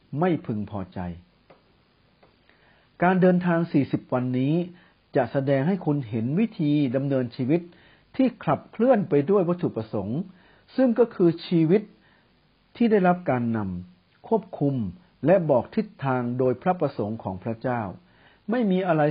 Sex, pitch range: male, 120-180 Hz